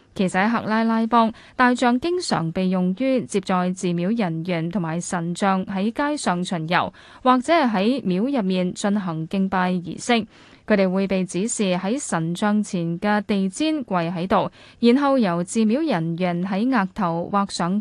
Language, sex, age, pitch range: Chinese, female, 10-29, 180-240 Hz